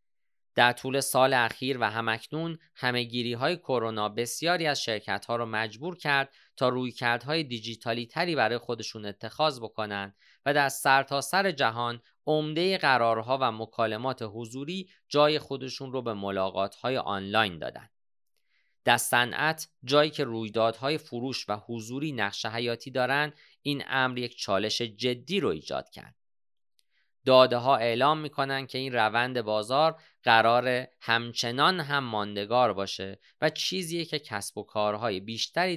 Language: Persian